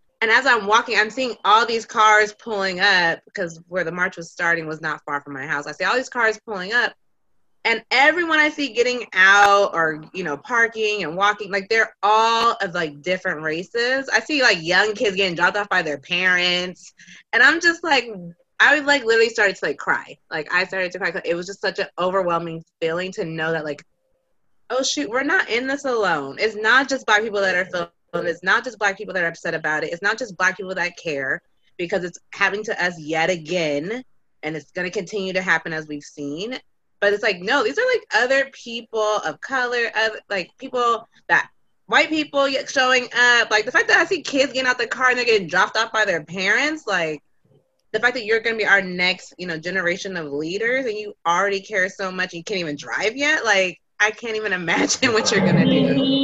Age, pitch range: 20-39, 175-240 Hz